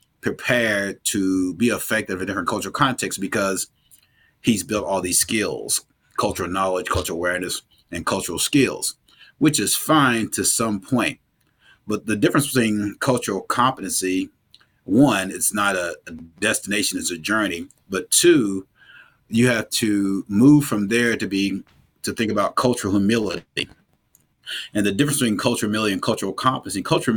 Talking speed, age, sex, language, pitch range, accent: 150 wpm, 30-49, male, English, 95-115 Hz, American